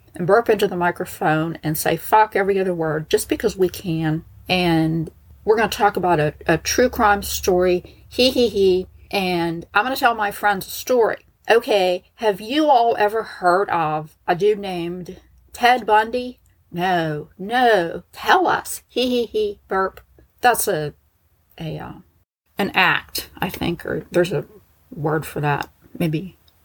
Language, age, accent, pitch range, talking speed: English, 40-59, American, 160-205 Hz, 165 wpm